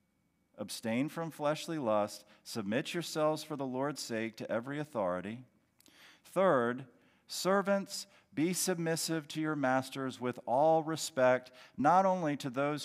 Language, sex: English, male